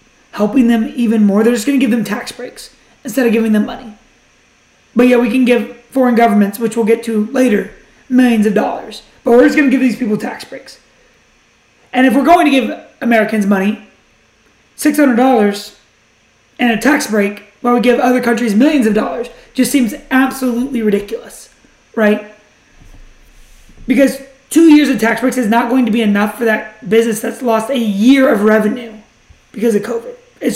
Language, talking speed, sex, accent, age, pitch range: English, 185 wpm, male, American, 30-49, 215-260 Hz